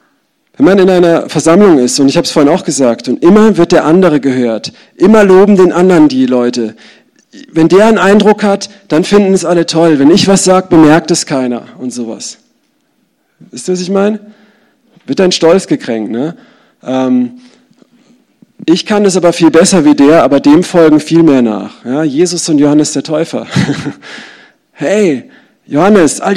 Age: 40-59